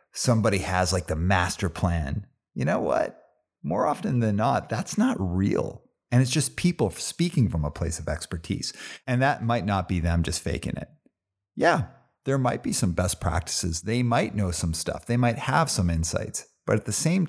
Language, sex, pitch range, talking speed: English, male, 85-110 Hz, 195 wpm